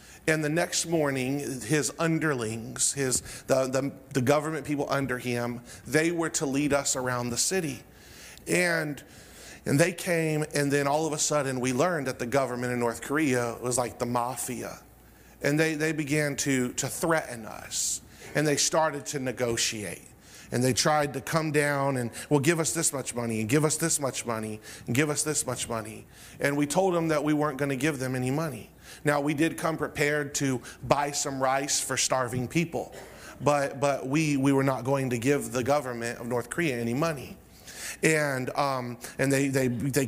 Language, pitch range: English, 130-150 Hz